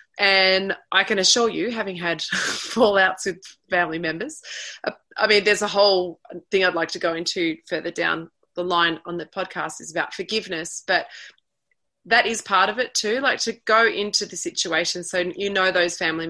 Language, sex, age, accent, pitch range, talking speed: English, female, 20-39, Australian, 175-220 Hz, 185 wpm